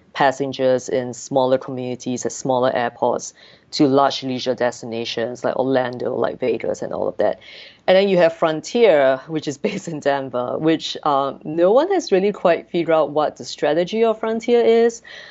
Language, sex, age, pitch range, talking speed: English, female, 20-39, 130-165 Hz, 175 wpm